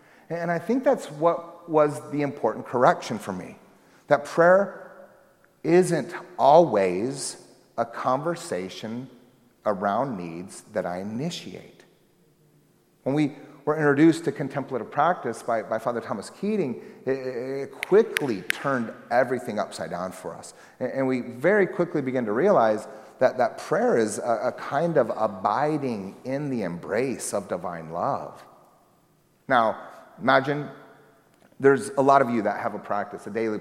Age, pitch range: 40-59, 120-155 Hz